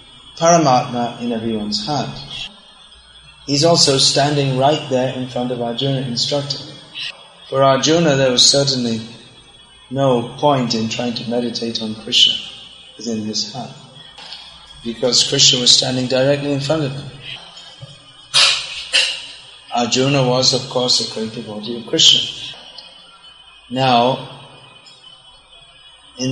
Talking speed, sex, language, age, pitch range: 115 wpm, male, English, 30-49, 120-140 Hz